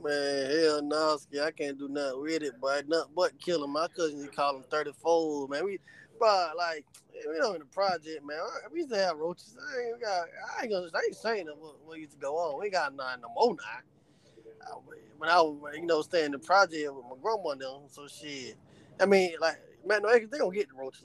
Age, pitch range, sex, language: 20-39, 155-225 Hz, male, English